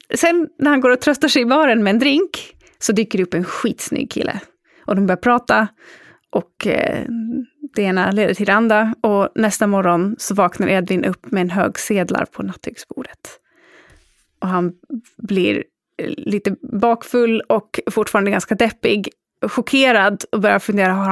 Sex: female